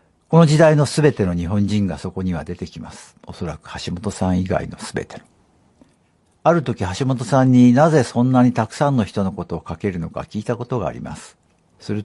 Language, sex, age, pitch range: Japanese, male, 60-79, 90-125 Hz